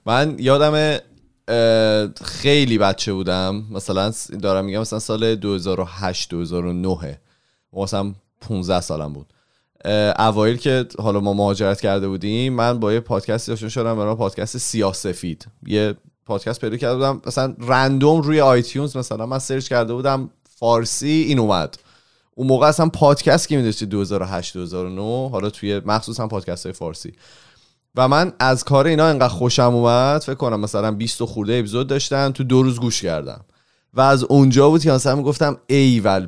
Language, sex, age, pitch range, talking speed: Persian, male, 30-49, 100-135 Hz, 150 wpm